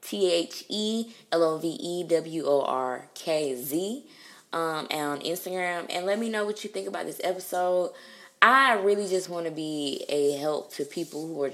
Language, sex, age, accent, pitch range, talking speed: English, female, 20-39, American, 145-175 Hz, 140 wpm